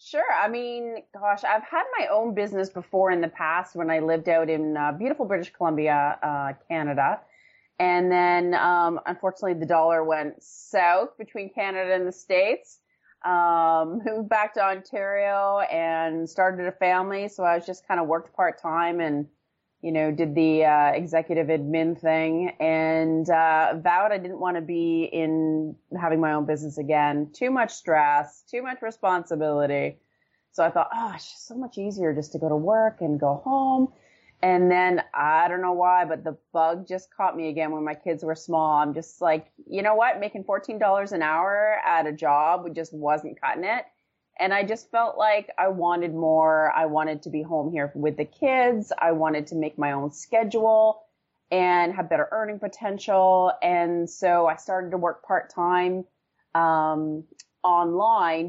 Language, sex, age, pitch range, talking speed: English, female, 30-49, 160-200 Hz, 175 wpm